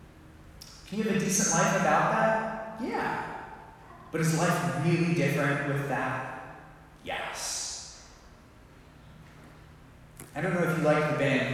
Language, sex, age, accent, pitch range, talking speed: English, male, 30-49, American, 115-175 Hz, 130 wpm